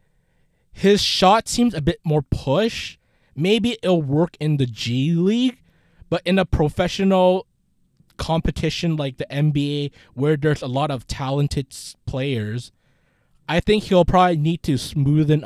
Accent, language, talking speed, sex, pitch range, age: American, English, 140 wpm, male, 130-170 Hz, 20-39